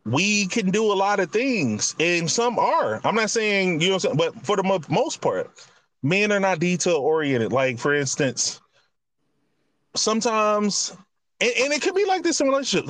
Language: English